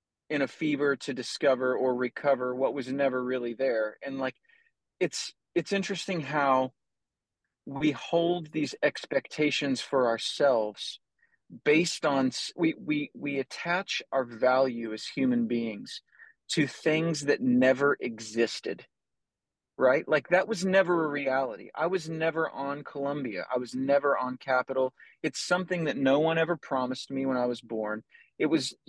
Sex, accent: male, American